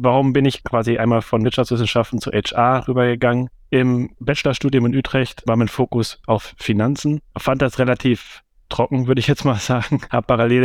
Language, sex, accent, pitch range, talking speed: German, male, German, 110-130 Hz, 170 wpm